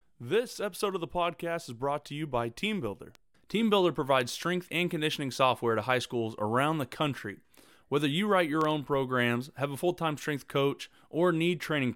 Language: English